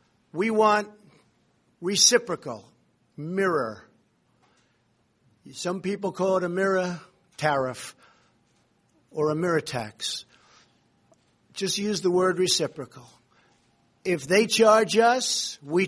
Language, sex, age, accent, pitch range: Chinese, male, 50-69, American, 145-185 Hz